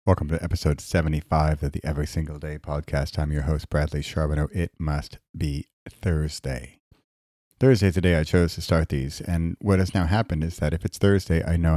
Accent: American